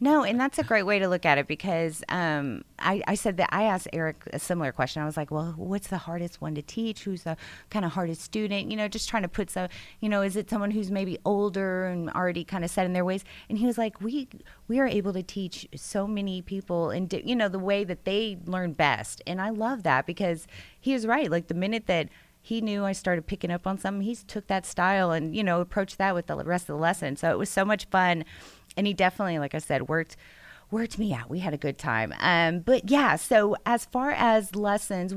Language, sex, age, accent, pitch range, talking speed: English, female, 30-49, American, 165-210 Hz, 255 wpm